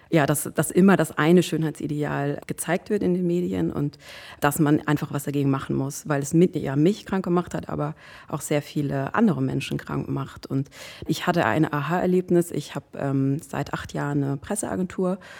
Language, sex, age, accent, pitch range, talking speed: German, female, 30-49, German, 140-165 Hz, 190 wpm